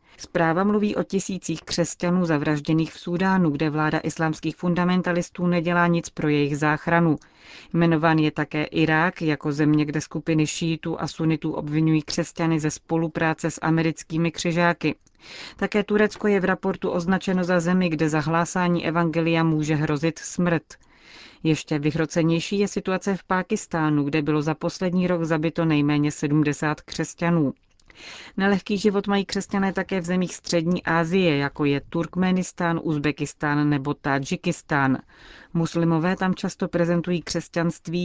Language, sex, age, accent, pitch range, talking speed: Czech, female, 30-49, native, 155-180 Hz, 135 wpm